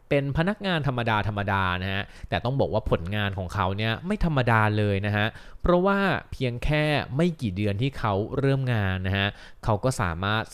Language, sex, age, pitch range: Thai, male, 20-39, 100-130 Hz